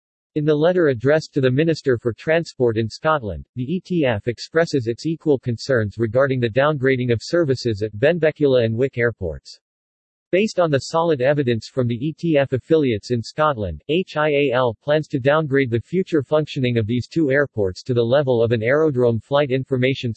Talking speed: 170 wpm